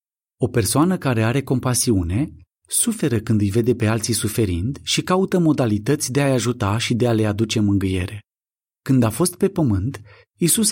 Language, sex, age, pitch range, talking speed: Romanian, male, 30-49, 105-140 Hz, 170 wpm